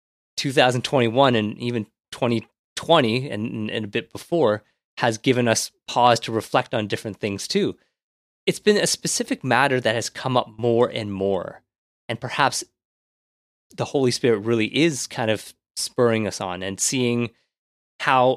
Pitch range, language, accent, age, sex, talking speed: 105-135 Hz, English, American, 30-49, male, 150 wpm